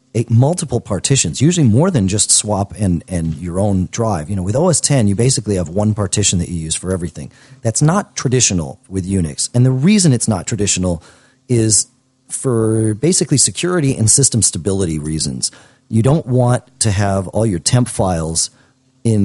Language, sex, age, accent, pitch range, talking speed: English, male, 40-59, American, 95-130 Hz, 175 wpm